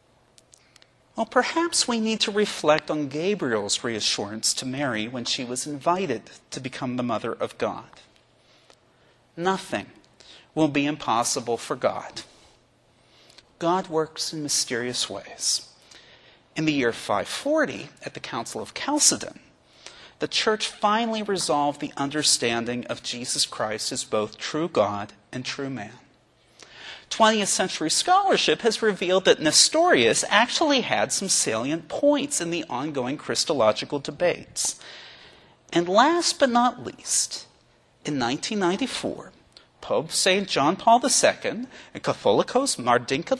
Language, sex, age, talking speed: English, male, 40-59, 125 wpm